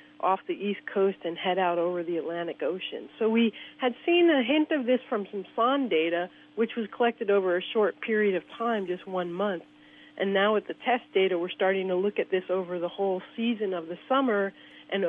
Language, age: English, 40-59